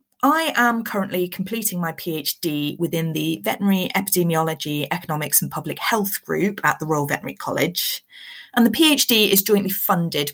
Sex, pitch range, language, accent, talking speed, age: female, 155-210 Hz, English, British, 150 wpm, 30-49